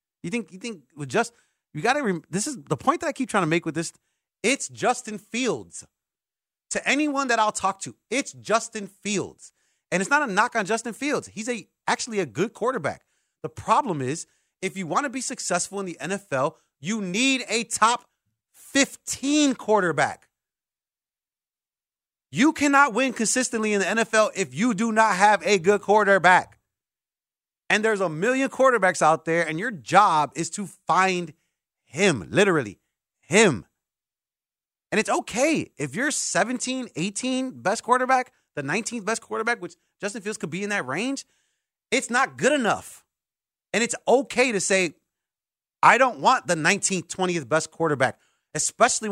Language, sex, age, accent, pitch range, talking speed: English, male, 30-49, American, 180-240 Hz, 165 wpm